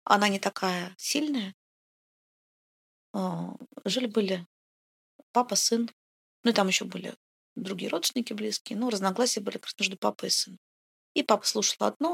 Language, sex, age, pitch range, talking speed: Russian, female, 20-39, 200-245 Hz, 135 wpm